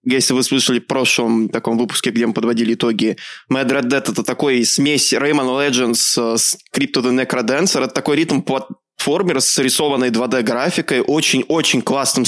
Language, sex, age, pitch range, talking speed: Russian, male, 20-39, 120-140 Hz, 150 wpm